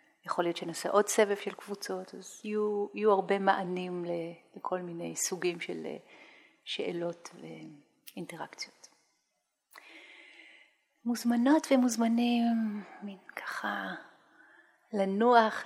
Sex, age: female, 40-59